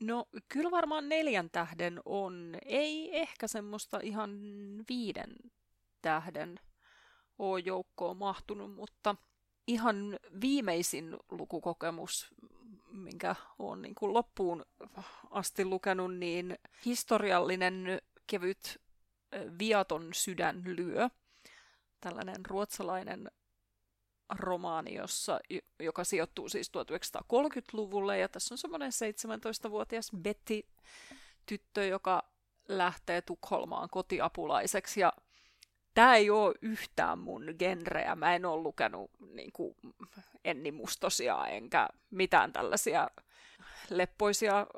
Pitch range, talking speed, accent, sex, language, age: 180-225 Hz, 85 wpm, Finnish, female, English, 30-49